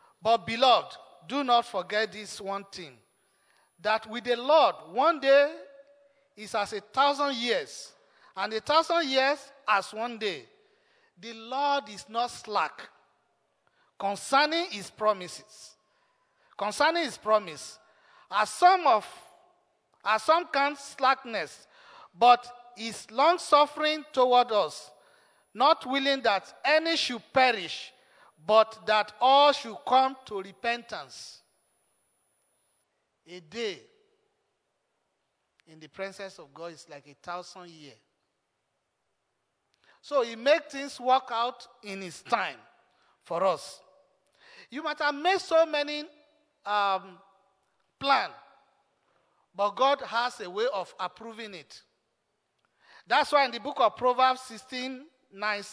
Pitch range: 210-300 Hz